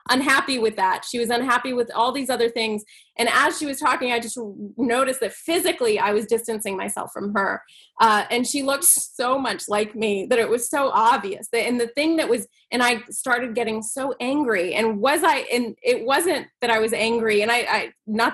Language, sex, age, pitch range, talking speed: English, female, 20-39, 225-290 Hz, 215 wpm